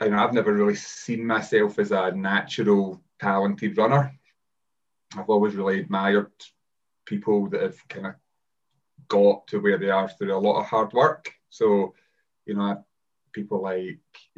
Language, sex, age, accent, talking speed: English, male, 20-39, British, 145 wpm